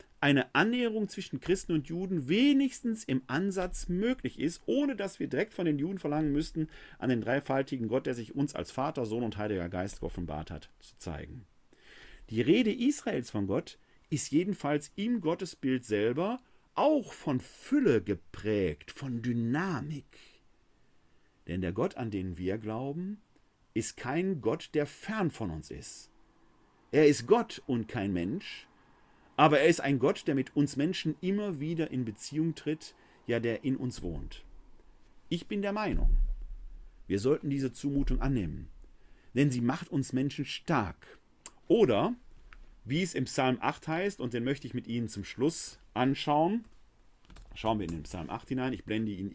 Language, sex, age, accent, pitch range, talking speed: German, male, 50-69, German, 110-175 Hz, 165 wpm